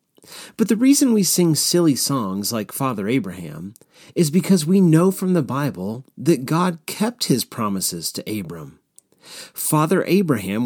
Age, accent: 40-59, American